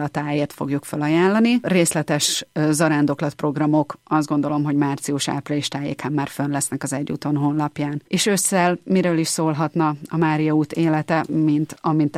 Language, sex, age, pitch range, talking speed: Hungarian, female, 30-49, 145-170 Hz, 140 wpm